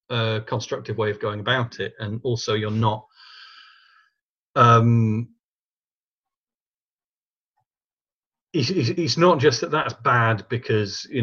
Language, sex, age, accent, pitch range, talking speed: English, male, 40-59, British, 110-135 Hz, 110 wpm